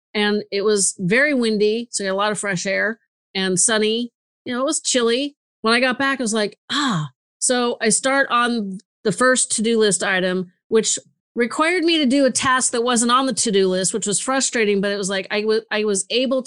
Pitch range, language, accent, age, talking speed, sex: 195-235 Hz, English, American, 40-59, 220 wpm, female